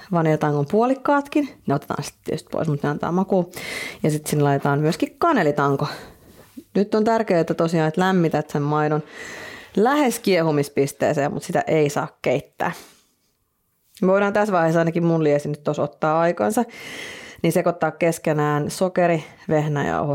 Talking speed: 145 wpm